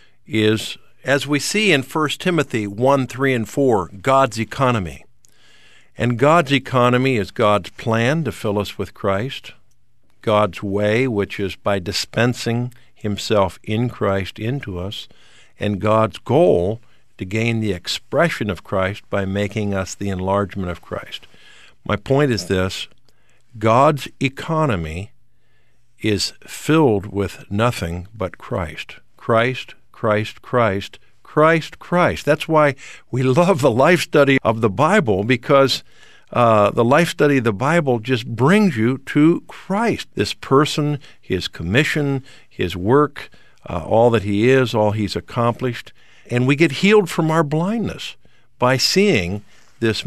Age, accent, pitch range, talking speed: 50-69, American, 100-135 Hz, 140 wpm